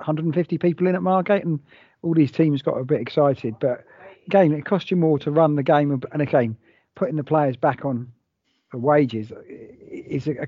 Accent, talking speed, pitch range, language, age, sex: British, 195 wpm, 130-160 Hz, English, 40-59, male